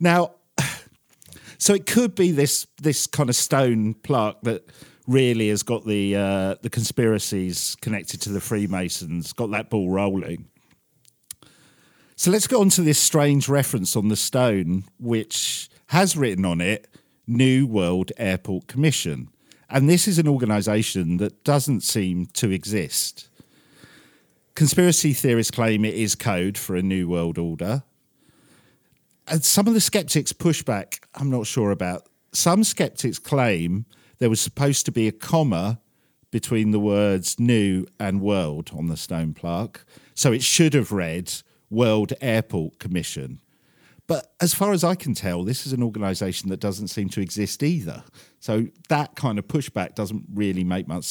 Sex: male